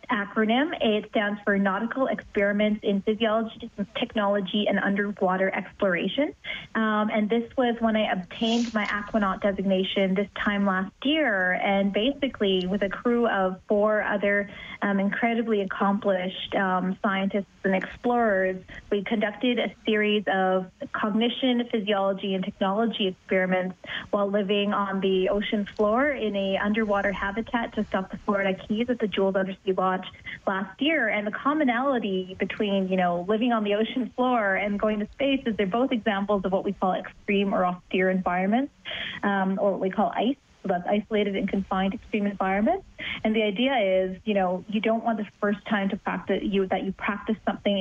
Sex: female